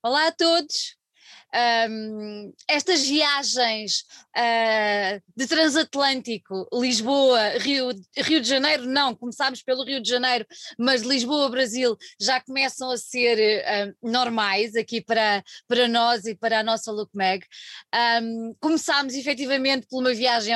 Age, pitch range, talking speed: 20-39, 230-280 Hz, 115 wpm